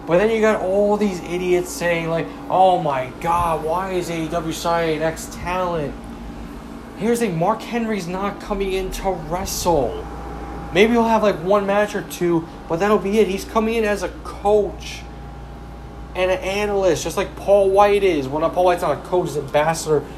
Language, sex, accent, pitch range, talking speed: English, male, American, 165-215 Hz, 185 wpm